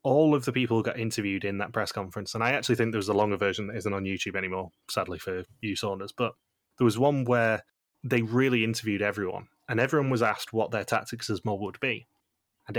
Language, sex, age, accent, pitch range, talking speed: English, male, 20-39, British, 100-120 Hz, 235 wpm